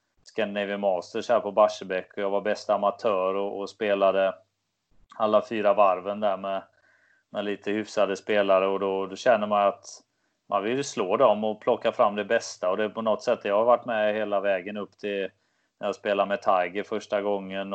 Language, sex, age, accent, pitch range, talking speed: English, male, 20-39, Swedish, 95-105 Hz, 195 wpm